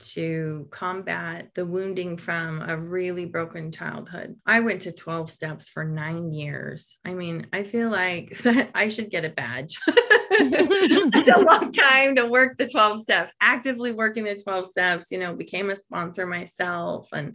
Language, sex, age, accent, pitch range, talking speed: English, female, 20-39, American, 180-235 Hz, 165 wpm